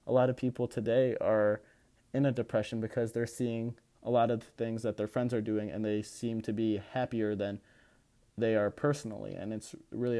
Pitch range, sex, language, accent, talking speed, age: 110-120 Hz, male, English, American, 205 wpm, 20-39